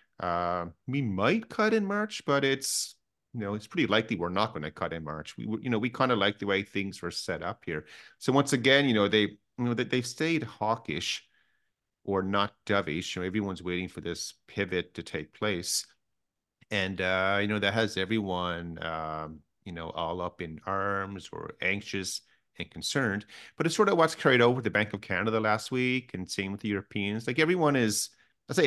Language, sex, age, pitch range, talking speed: English, male, 30-49, 95-125 Hz, 210 wpm